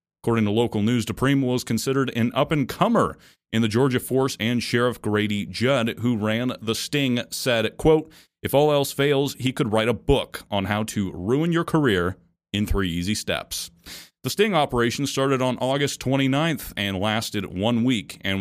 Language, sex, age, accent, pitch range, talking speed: English, male, 30-49, American, 95-125 Hz, 175 wpm